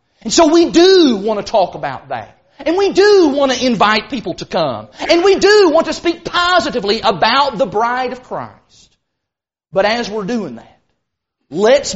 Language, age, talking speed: English, 40-59, 180 wpm